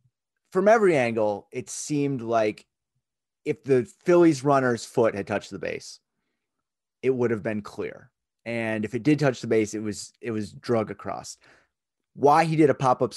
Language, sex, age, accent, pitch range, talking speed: English, male, 30-49, American, 100-130 Hz, 175 wpm